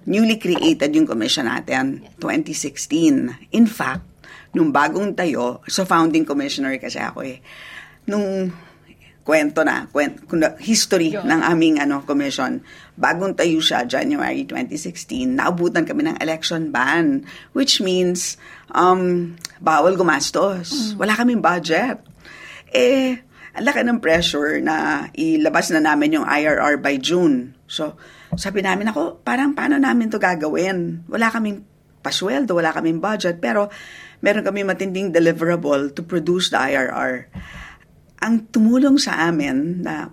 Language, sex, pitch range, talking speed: Filipino, female, 160-255 Hz, 125 wpm